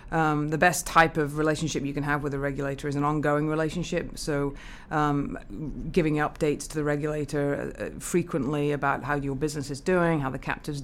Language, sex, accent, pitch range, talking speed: English, female, British, 145-160 Hz, 185 wpm